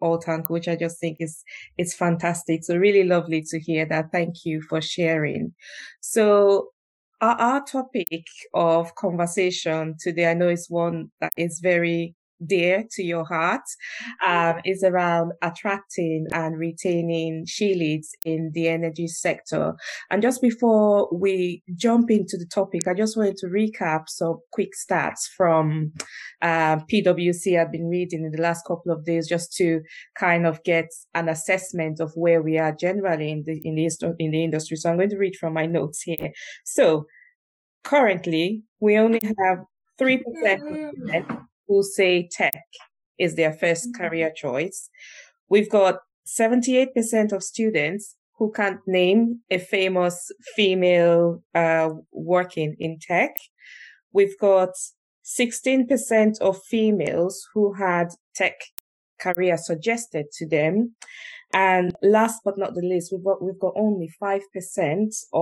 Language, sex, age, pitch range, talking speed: English, female, 20-39, 165-200 Hz, 145 wpm